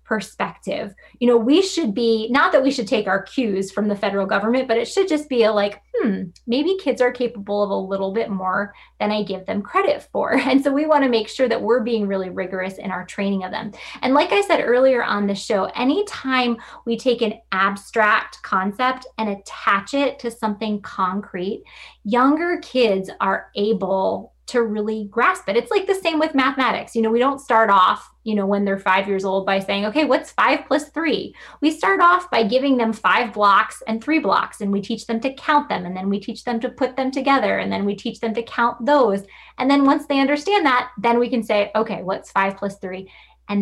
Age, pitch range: 20-39, 200-260 Hz